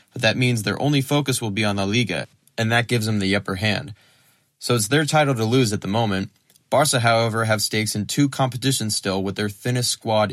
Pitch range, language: 100-120 Hz, English